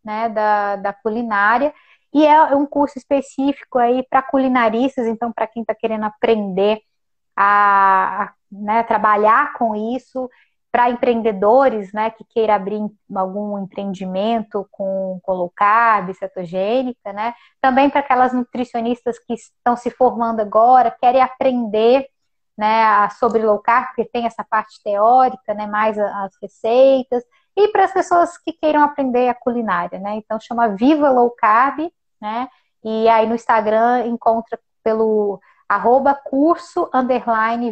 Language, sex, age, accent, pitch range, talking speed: Portuguese, female, 10-29, Brazilian, 220-275 Hz, 140 wpm